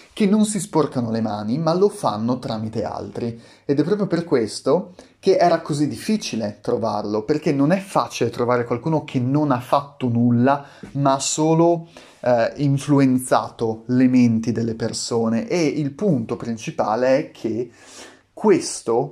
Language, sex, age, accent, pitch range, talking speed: Italian, male, 30-49, native, 120-155 Hz, 150 wpm